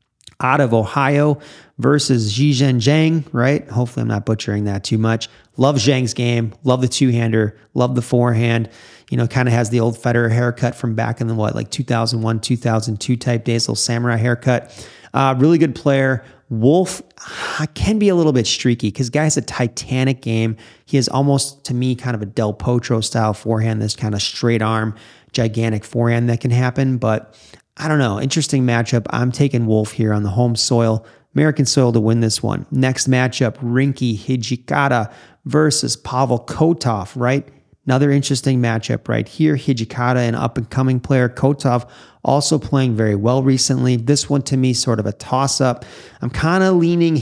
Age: 30-49